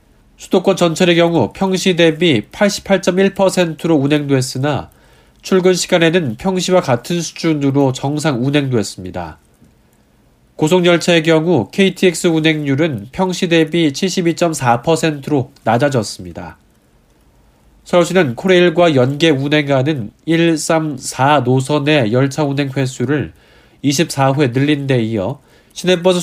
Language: Korean